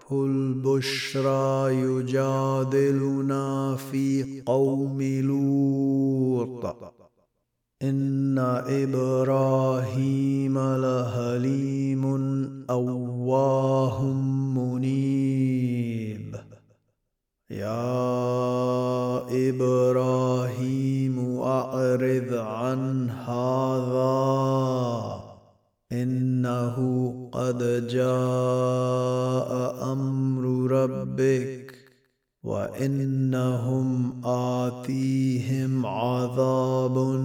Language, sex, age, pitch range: Arabic, male, 30-49, 125-130 Hz